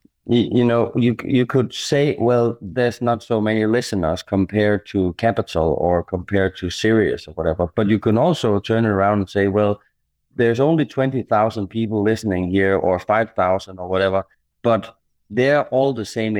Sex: male